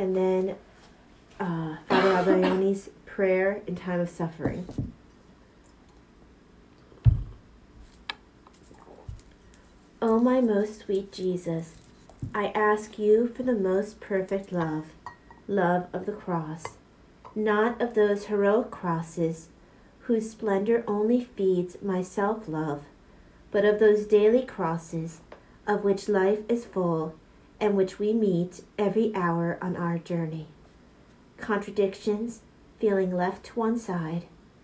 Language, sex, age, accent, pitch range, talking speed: English, female, 40-59, American, 165-210 Hz, 110 wpm